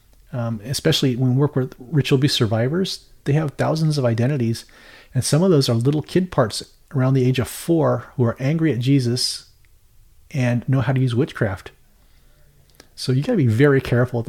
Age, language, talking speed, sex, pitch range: 40-59, English, 195 wpm, male, 120-145 Hz